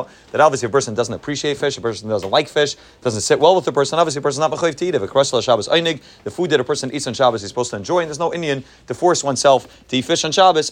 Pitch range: 120-150 Hz